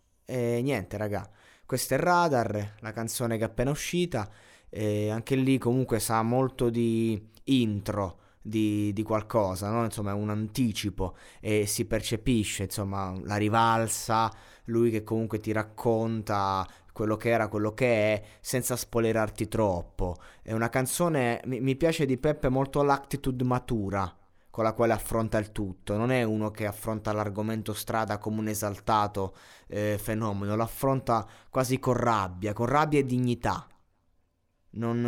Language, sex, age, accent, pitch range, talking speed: Italian, male, 20-39, native, 105-125 Hz, 145 wpm